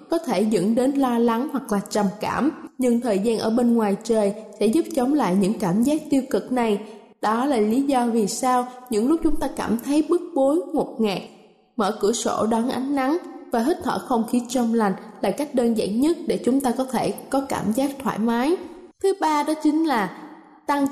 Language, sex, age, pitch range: Vietnamese, female, 10-29, 225-295 Hz